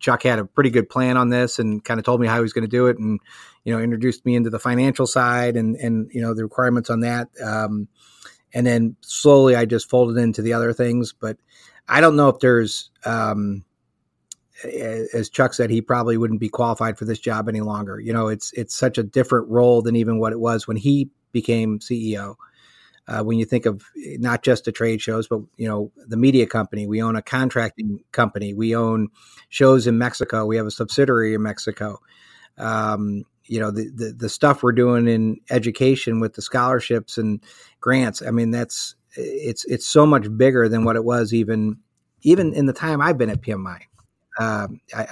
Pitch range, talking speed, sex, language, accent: 110-125 Hz, 205 wpm, male, English, American